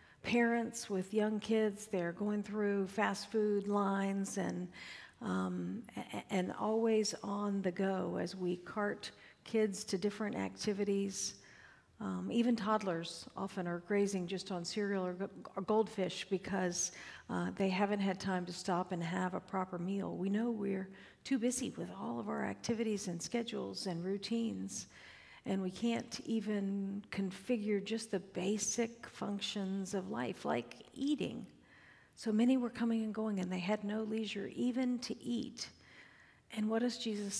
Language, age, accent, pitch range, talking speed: English, 50-69, American, 185-220 Hz, 150 wpm